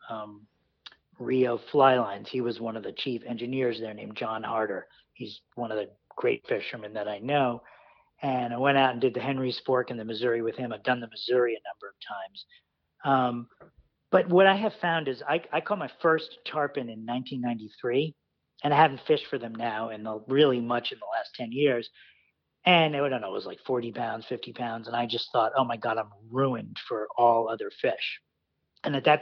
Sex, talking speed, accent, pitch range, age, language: male, 215 wpm, American, 120-145 Hz, 40-59, English